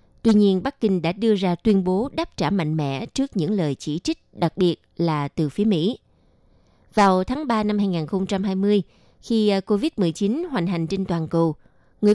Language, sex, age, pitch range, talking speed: Vietnamese, female, 20-39, 170-230 Hz, 185 wpm